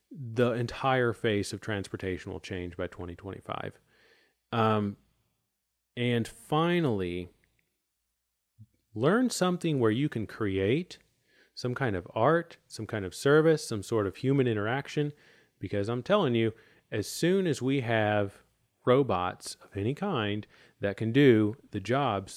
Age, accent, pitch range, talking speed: 30-49, American, 100-125 Hz, 130 wpm